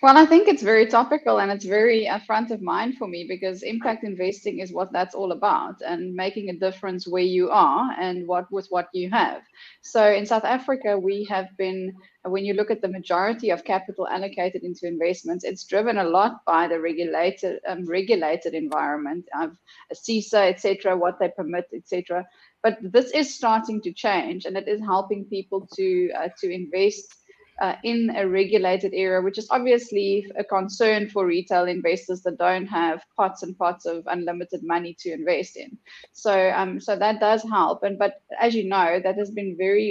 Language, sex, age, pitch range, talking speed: English, female, 20-39, 180-215 Hz, 190 wpm